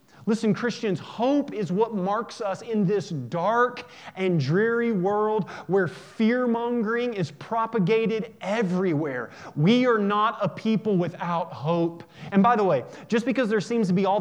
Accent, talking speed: American, 150 wpm